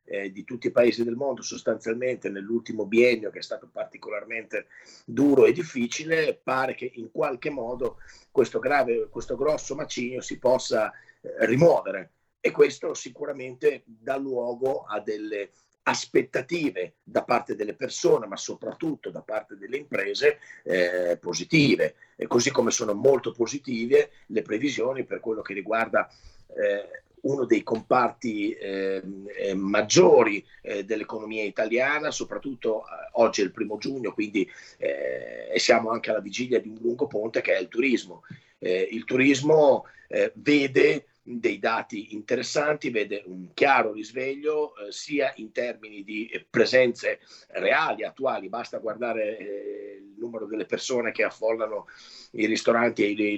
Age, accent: 40-59, native